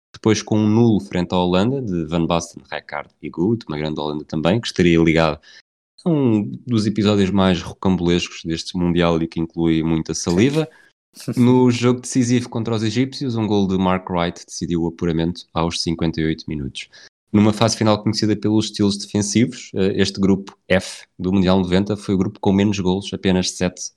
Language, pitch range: Portuguese, 85-105 Hz